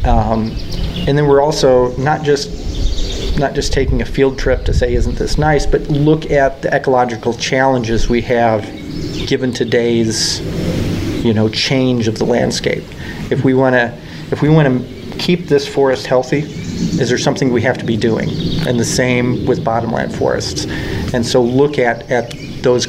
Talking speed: 175 wpm